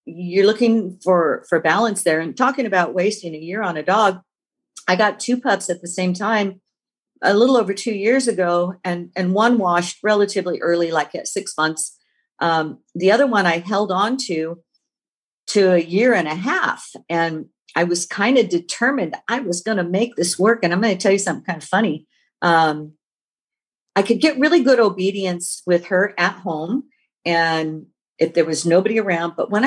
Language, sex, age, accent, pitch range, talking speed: English, female, 50-69, American, 170-230 Hz, 190 wpm